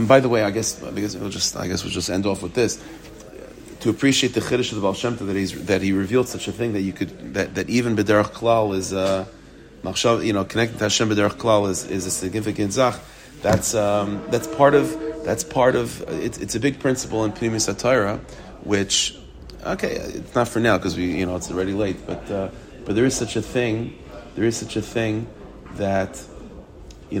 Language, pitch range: English, 95-120 Hz